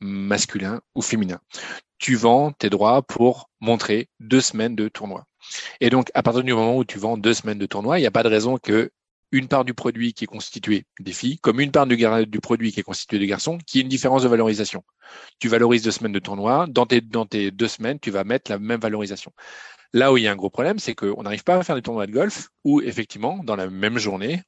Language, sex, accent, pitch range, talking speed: French, male, French, 105-140 Hz, 250 wpm